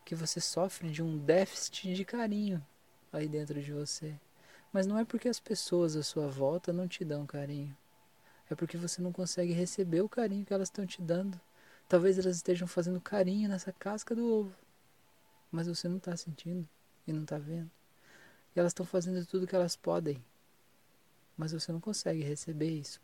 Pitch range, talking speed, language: 145-180 Hz, 180 wpm, Portuguese